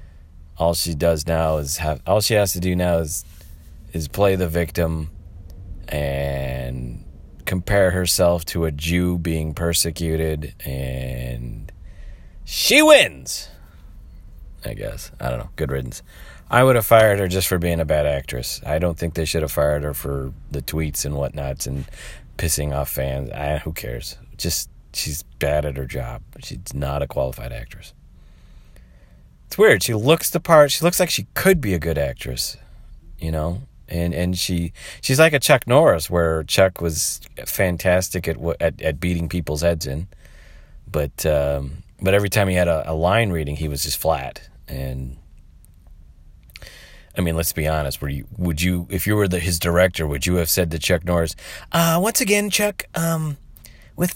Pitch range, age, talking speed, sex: 75-95 Hz, 30-49, 175 wpm, male